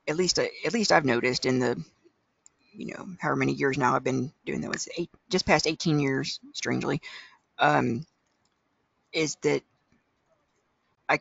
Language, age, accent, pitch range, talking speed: English, 50-69, American, 130-160 Hz, 155 wpm